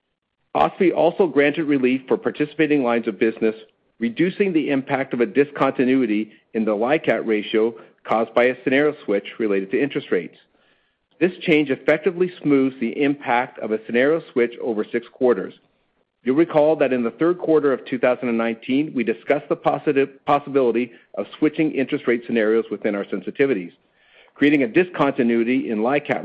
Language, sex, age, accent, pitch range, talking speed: English, male, 50-69, American, 115-155 Hz, 155 wpm